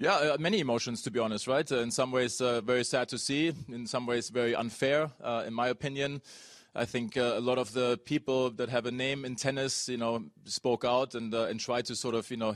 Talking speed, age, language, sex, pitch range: 245 wpm, 20-39, English, male, 125-140 Hz